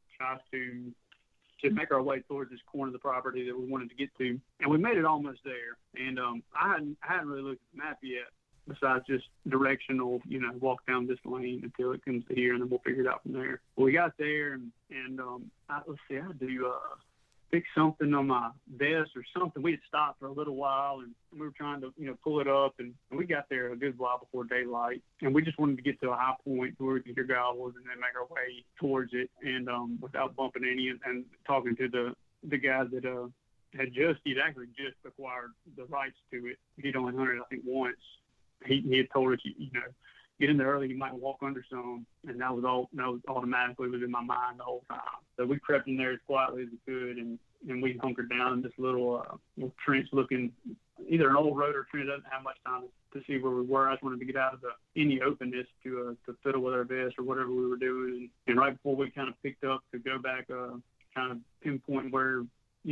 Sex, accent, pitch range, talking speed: male, American, 125-135 Hz, 250 wpm